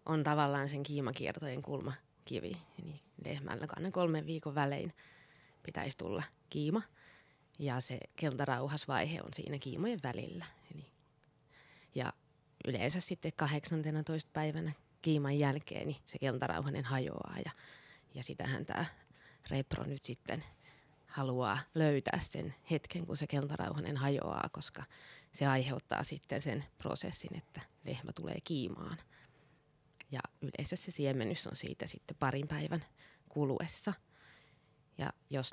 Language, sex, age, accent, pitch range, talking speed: Finnish, female, 20-39, native, 140-160 Hz, 120 wpm